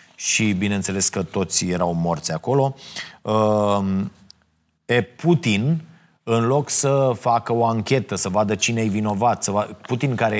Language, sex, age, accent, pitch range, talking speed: Romanian, male, 30-49, native, 105-135 Hz, 125 wpm